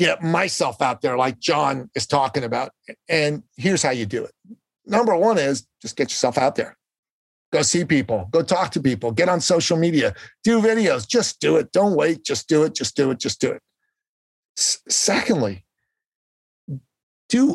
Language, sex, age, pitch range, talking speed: English, male, 50-69, 165-240 Hz, 180 wpm